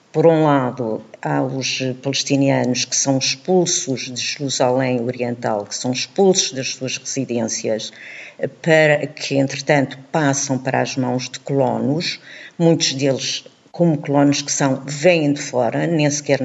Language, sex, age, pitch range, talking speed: Portuguese, female, 50-69, 125-150 Hz, 140 wpm